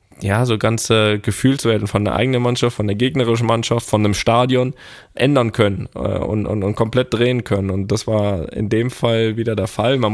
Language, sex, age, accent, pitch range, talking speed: German, male, 10-29, German, 100-115 Hz, 195 wpm